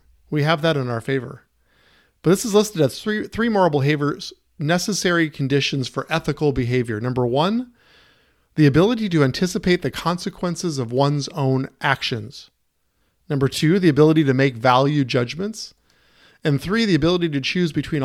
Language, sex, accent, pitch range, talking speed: English, male, American, 125-165 Hz, 155 wpm